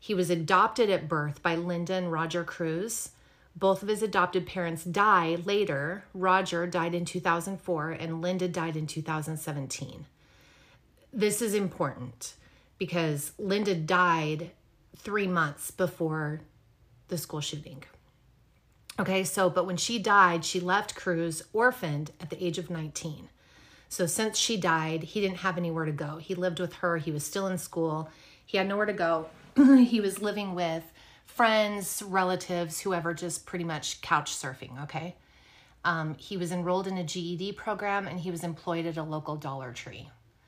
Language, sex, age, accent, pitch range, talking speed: English, female, 30-49, American, 160-190 Hz, 160 wpm